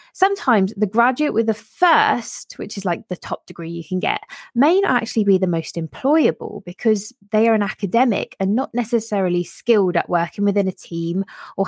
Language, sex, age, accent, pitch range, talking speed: English, female, 20-39, British, 180-235 Hz, 190 wpm